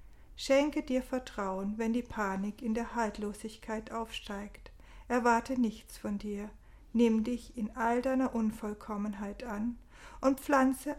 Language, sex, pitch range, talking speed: German, female, 200-240 Hz, 125 wpm